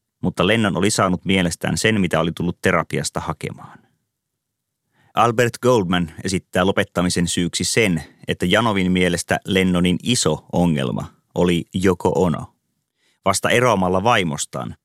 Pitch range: 85-105 Hz